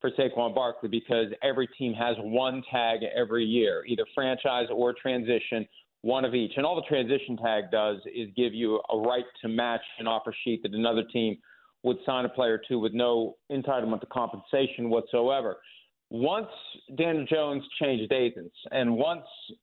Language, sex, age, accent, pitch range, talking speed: English, male, 40-59, American, 125-150 Hz, 170 wpm